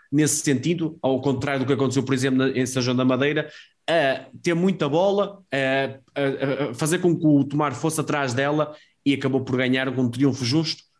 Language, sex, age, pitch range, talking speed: Portuguese, male, 20-39, 130-165 Hz, 185 wpm